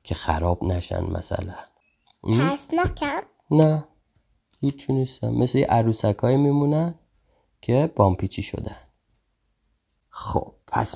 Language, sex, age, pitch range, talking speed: Persian, male, 30-49, 95-135 Hz, 100 wpm